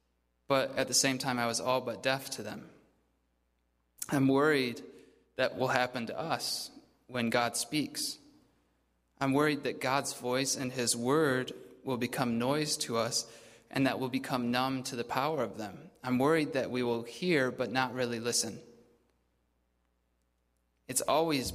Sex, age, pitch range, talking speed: male, 20-39, 115-140 Hz, 160 wpm